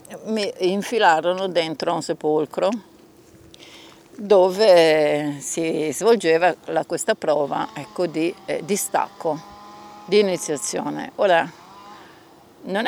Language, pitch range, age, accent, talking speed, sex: Italian, 155-205 Hz, 50-69, native, 90 wpm, female